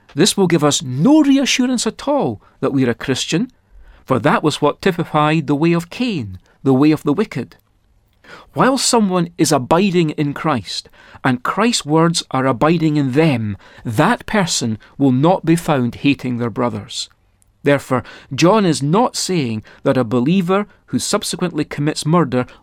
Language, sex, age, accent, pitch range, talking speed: English, male, 40-59, British, 125-175 Hz, 160 wpm